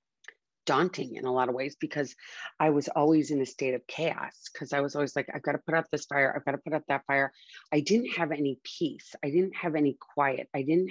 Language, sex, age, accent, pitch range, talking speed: English, female, 40-59, American, 125-145 Hz, 255 wpm